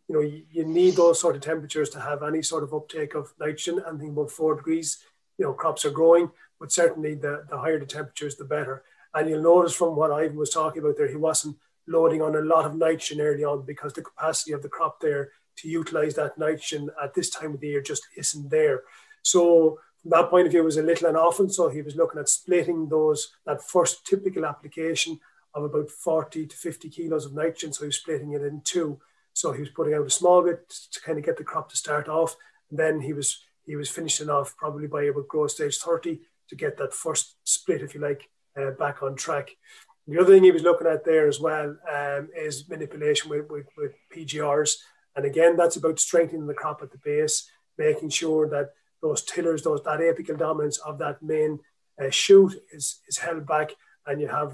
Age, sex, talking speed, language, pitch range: 30-49, male, 225 wpm, English, 150-170 Hz